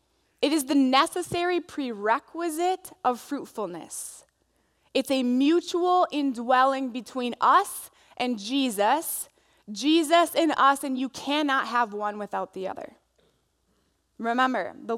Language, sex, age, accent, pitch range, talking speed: English, female, 20-39, American, 210-280 Hz, 110 wpm